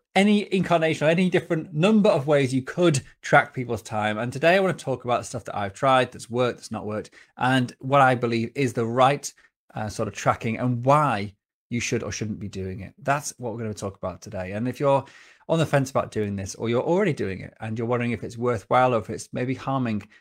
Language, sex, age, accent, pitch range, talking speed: English, male, 30-49, British, 110-145 Hz, 240 wpm